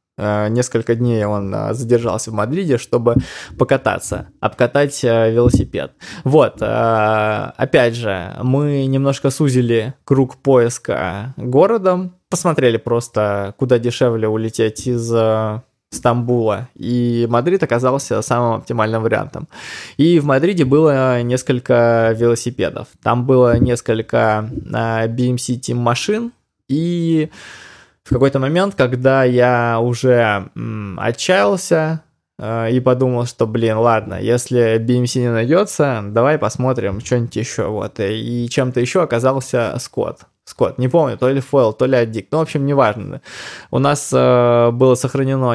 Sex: male